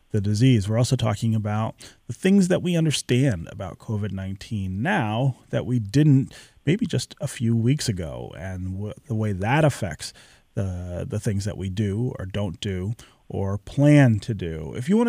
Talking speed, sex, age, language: 180 wpm, male, 30-49, English